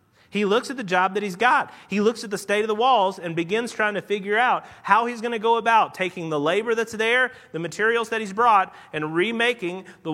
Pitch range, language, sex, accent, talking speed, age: 135-210 Hz, English, male, American, 245 wpm, 30-49